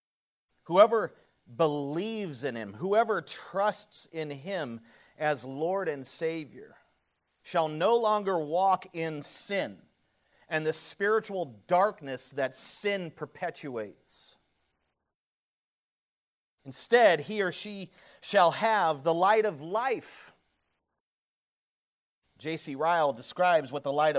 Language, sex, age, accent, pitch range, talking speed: English, male, 40-59, American, 140-195 Hz, 100 wpm